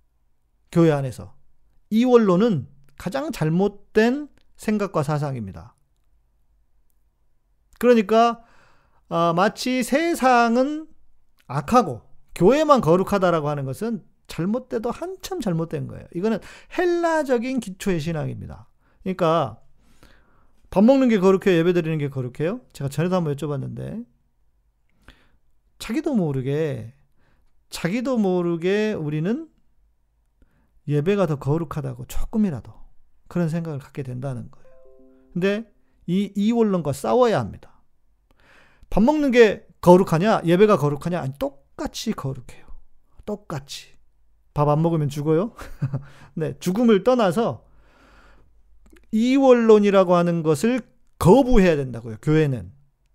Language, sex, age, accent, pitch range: Korean, male, 40-59, native, 135-225 Hz